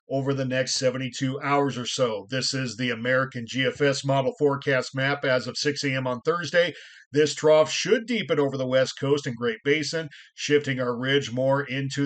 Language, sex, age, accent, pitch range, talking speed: English, male, 50-69, American, 130-155 Hz, 185 wpm